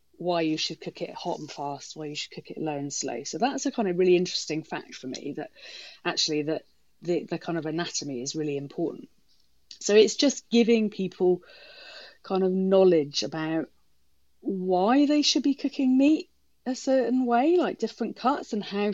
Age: 30-49